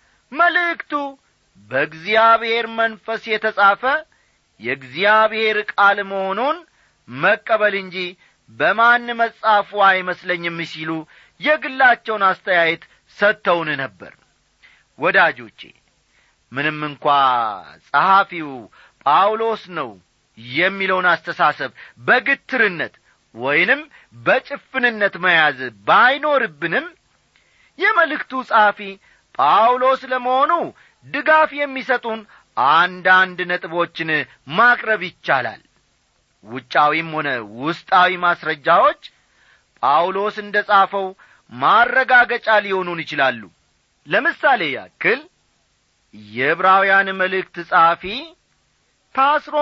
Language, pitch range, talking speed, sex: Amharic, 165-240 Hz, 70 wpm, male